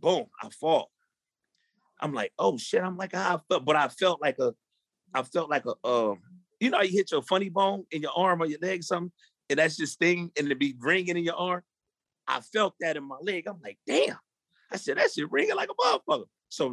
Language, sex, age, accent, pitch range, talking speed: English, male, 30-49, American, 135-185 Hz, 235 wpm